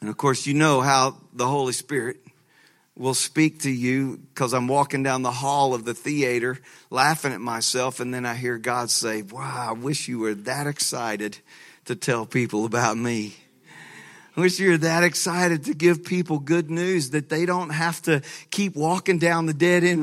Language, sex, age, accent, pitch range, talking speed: English, male, 40-59, American, 140-185 Hz, 190 wpm